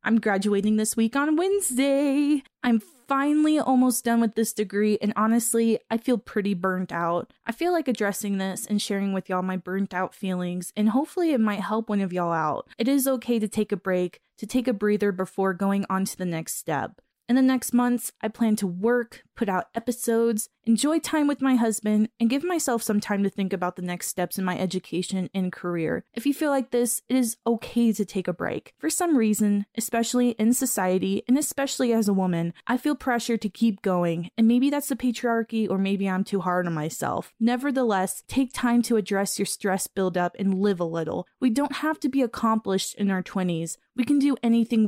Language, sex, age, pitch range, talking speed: English, female, 20-39, 190-245 Hz, 210 wpm